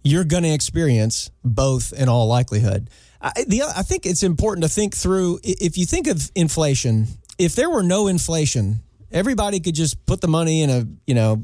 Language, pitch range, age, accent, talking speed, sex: English, 135-180 Hz, 40-59, American, 195 wpm, male